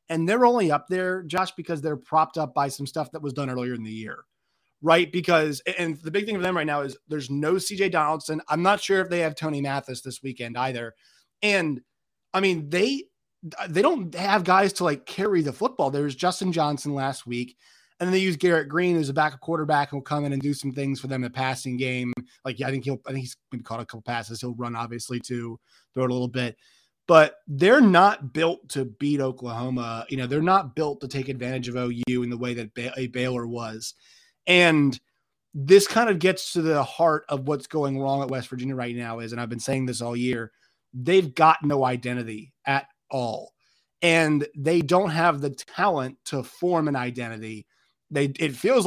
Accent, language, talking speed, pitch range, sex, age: American, English, 215 wpm, 125-165 Hz, male, 30-49